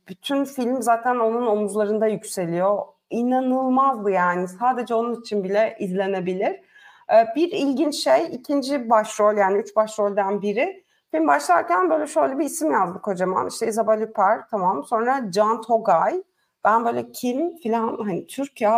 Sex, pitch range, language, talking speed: female, 195-280 Hz, Turkish, 135 wpm